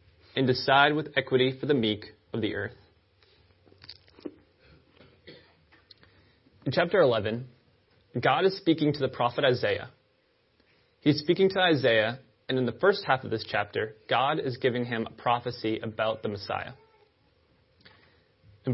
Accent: American